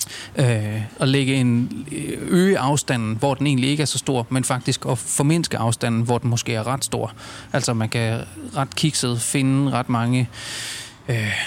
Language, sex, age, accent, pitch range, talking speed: Danish, male, 30-49, native, 120-150 Hz, 175 wpm